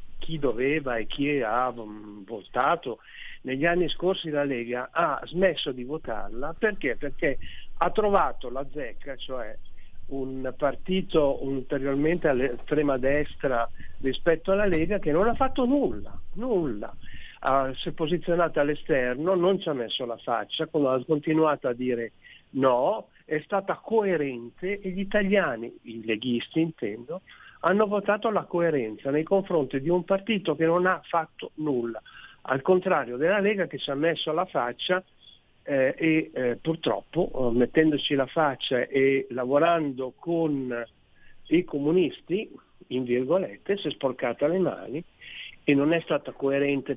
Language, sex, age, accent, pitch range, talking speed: Italian, male, 50-69, native, 130-175 Hz, 145 wpm